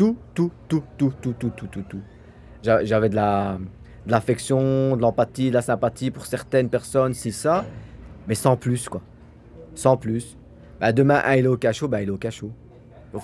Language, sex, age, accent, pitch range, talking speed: French, male, 40-59, French, 110-135 Hz, 185 wpm